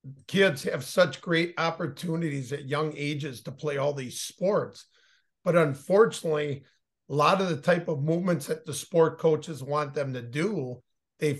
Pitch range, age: 150-190 Hz, 50-69